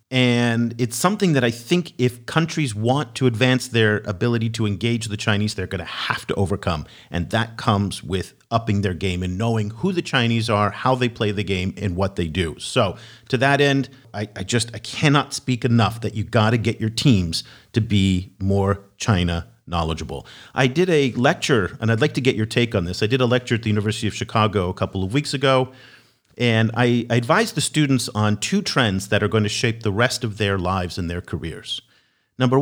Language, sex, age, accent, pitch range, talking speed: English, male, 40-59, American, 100-125 Hz, 215 wpm